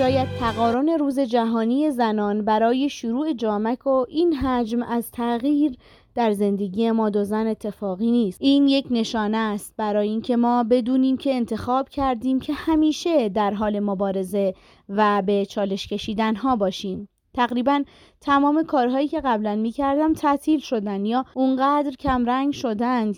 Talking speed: 140 wpm